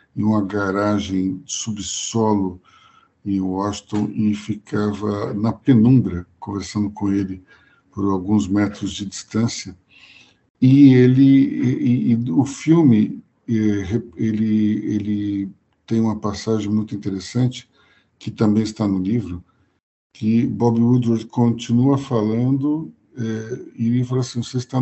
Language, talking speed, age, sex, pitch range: Portuguese, 120 wpm, 60-79, male, 105-120 Hz